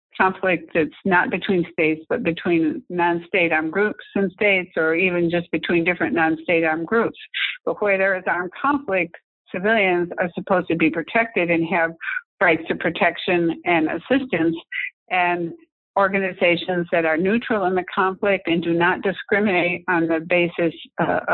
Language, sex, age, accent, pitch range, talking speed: English, female, 60-79, American, 170-200 Hz, 155 wpm